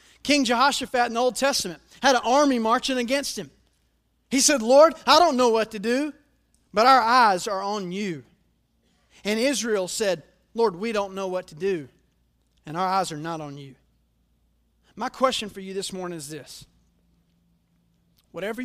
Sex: male